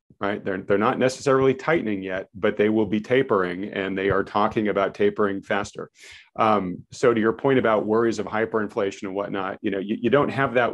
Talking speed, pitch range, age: 205 wpm, 100-115 Hz, 40-59